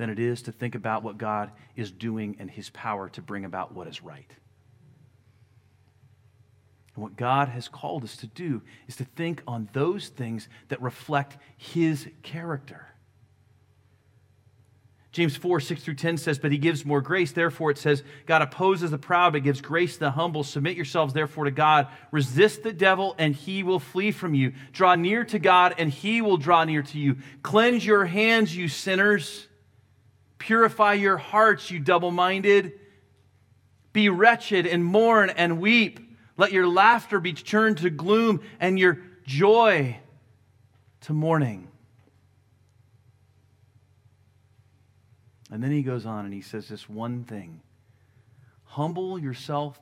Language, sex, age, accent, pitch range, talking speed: English, male, 40-59, American, 110-175 Hz, 155 wpm